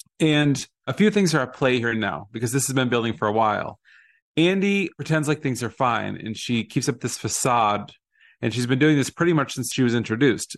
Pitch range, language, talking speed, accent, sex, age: 110-135 Hz, English, 225 wpm, American, male, 30-49